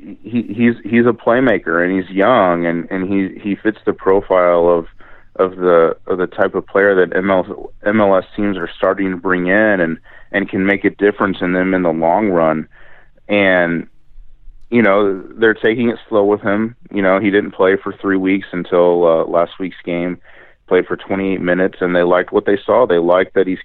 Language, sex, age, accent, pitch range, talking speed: English, male, 30-49, American, 85-100 Hz, 205 wpm